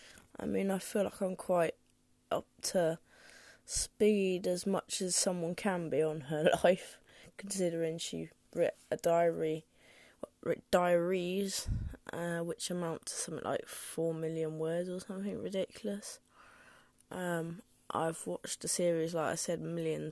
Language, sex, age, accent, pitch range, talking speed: English, female, 20-39, British, 165-215 Hz, 145 wpm